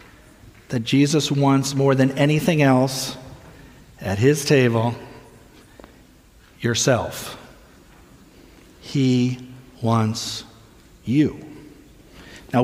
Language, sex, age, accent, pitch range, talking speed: English, male, 50-69, American, 125-160 Hz, 70 wpm